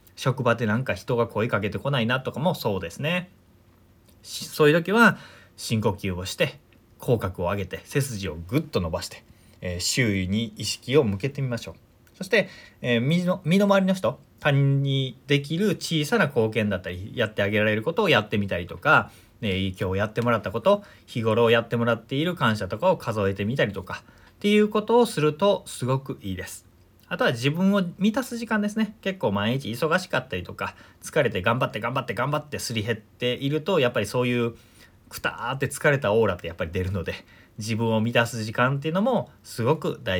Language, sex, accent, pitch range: Japanese, male, native, 100-140 Hz